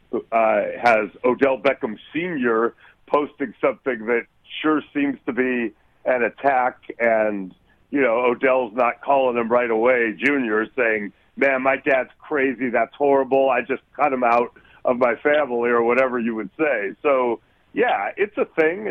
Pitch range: 110-140 Hz